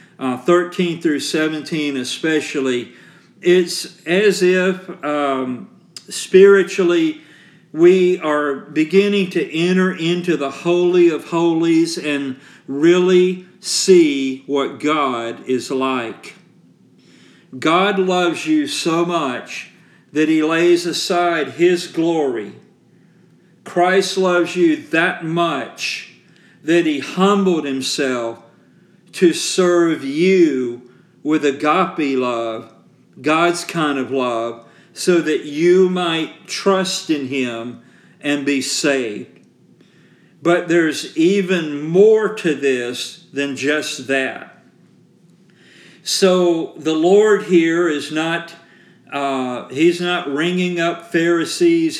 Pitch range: 150-180 Hz